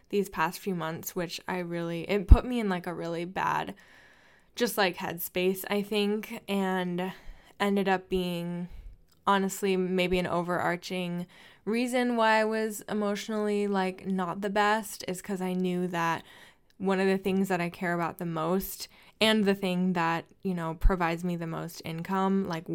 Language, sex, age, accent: English, female, 10-29, American